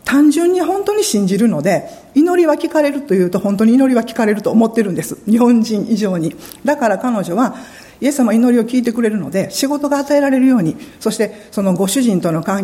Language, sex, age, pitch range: Japanese, female, 50-69, 190-265 Hz